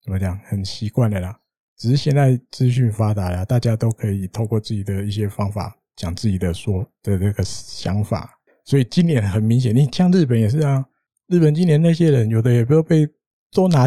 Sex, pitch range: male, 110-145 Hz